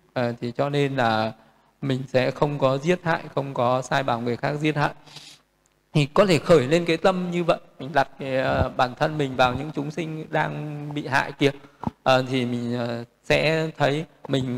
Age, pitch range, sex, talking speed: 20-39, 130-155 Hz, male, 205 wpm